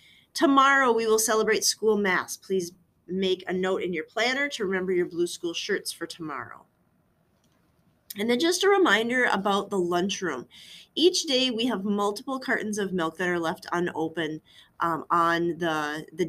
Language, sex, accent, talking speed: English, female, American, 165 wpm